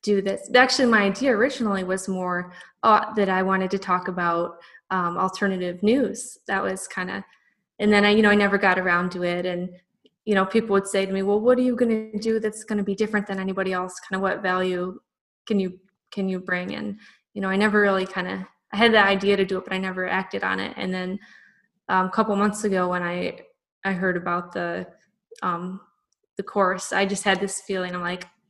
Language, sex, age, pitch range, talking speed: English, female, 20-39, 185-205 Hz, 230 wpm